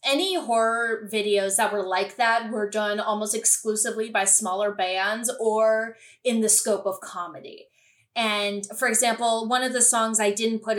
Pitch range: 200-260 Hz